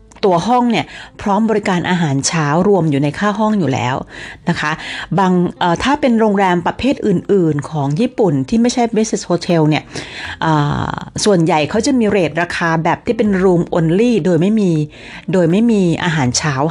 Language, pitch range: Thai, 155-210 Hz